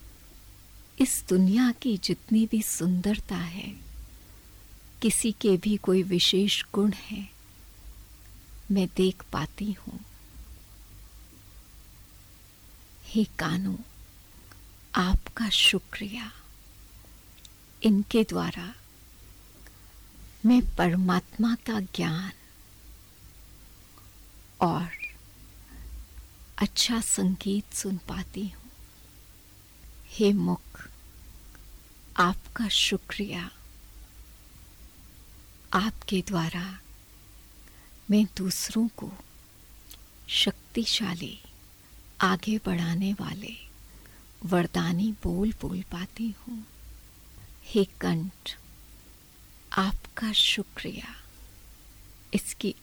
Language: Hindi